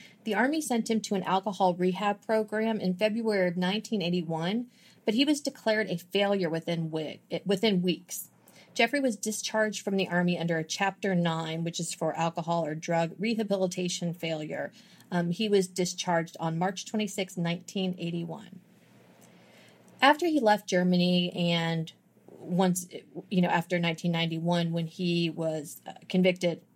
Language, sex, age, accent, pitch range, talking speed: English, female, 30-49, American, 170-205 Hz, 140 wpm